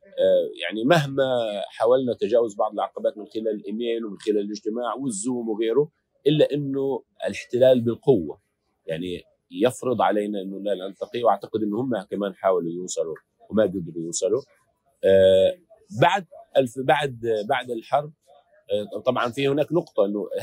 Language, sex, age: Arabic, male, 40-59